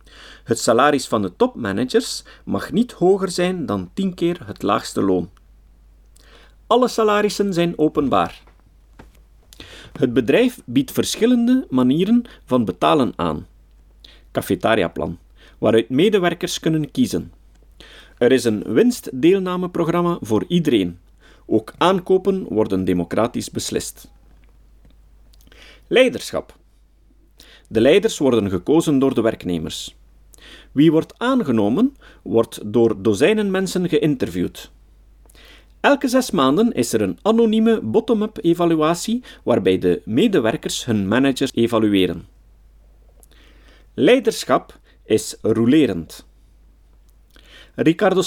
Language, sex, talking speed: Dutch, male, 95 wpm